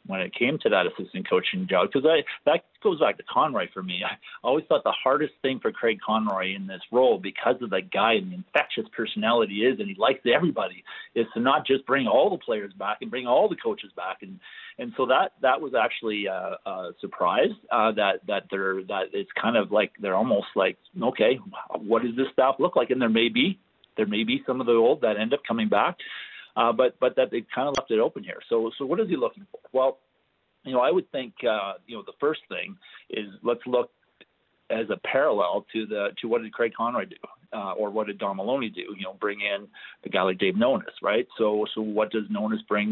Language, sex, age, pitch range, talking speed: English, male, 40-59, 110-155 Hz, 240 wpm